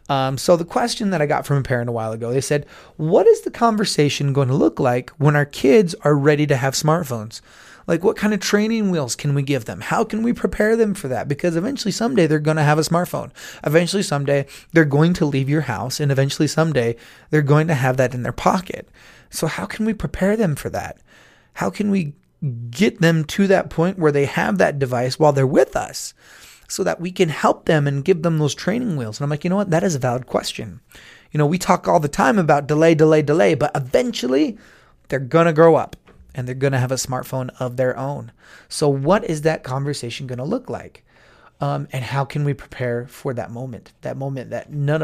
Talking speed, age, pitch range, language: 230 wpm, 30-49, 130-170 Hz, English